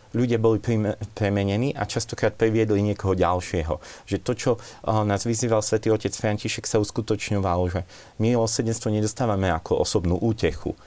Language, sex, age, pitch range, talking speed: Slovak, male, 40-59, 90-110 Hz, 135 wpm